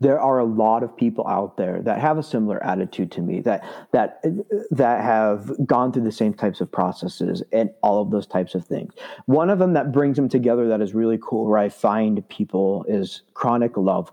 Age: 30-49